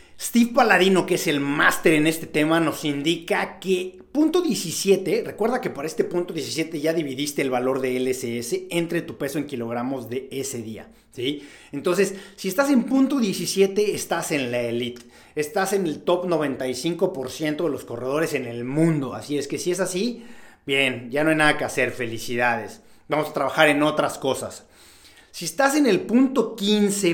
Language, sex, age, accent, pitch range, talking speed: Spanish, male, 40-59, Mexican, 140-190 Hz, 180 wpm